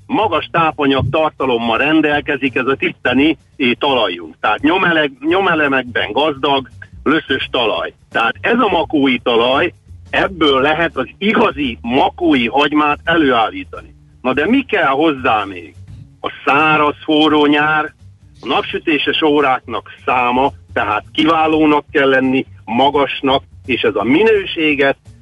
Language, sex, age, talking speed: Hungarian, male, 60-79, 115 wpm